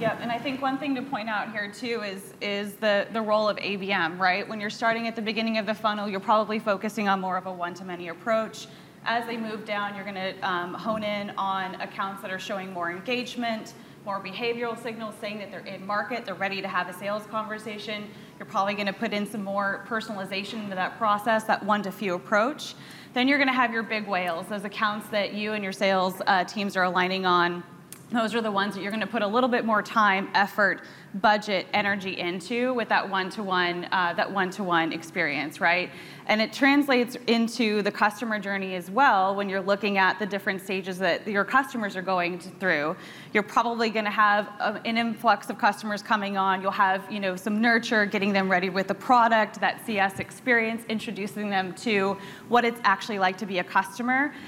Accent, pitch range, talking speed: American, 190-225 Hz, 205 wpm